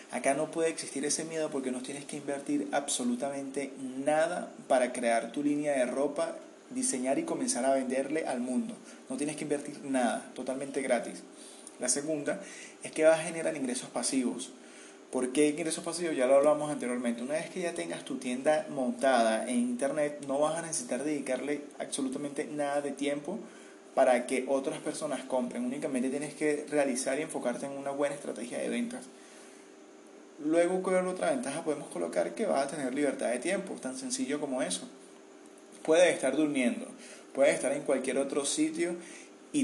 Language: Spanish